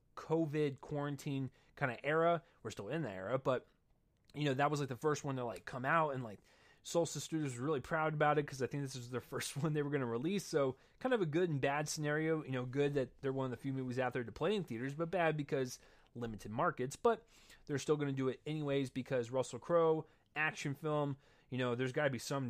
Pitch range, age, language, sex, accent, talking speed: 125-155 Hz, 30-49, English, male, American, 250 wpm